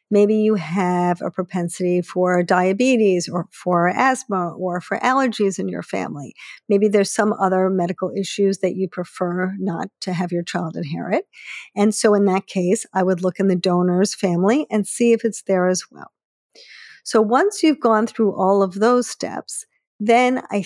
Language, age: English, 50-69